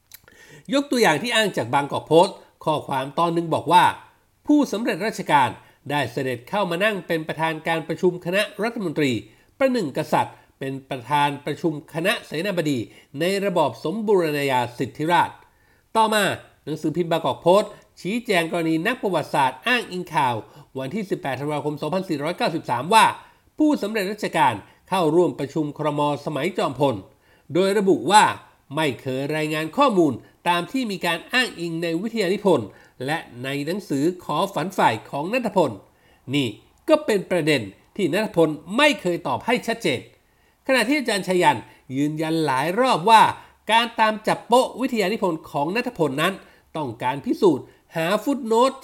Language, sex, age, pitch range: Thai, male, 60-79, 150-215 Hz